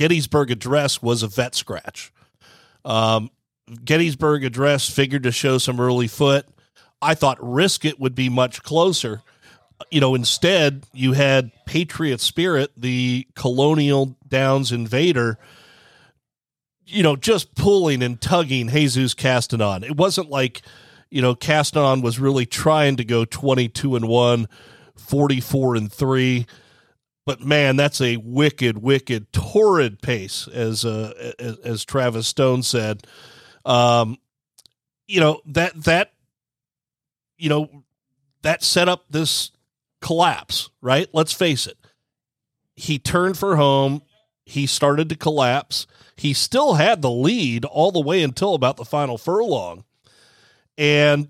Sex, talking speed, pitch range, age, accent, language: male, 130 wpm, 125-150 Hz, 40-59, American, English